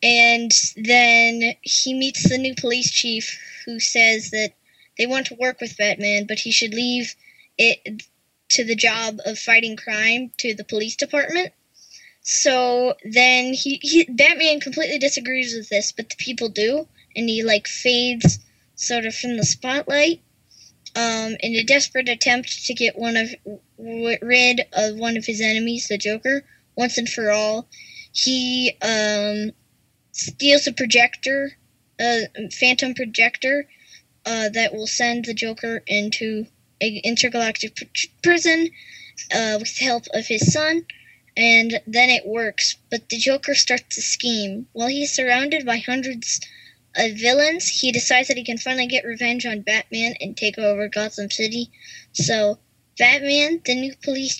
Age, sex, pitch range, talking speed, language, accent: 10-29, female, 220-260 Hz, 150 wpm, English, American